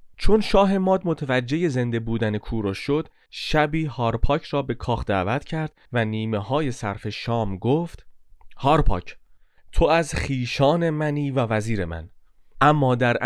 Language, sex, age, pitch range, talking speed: Persian, male, 30-49, 110-145 Hz, 140 wpm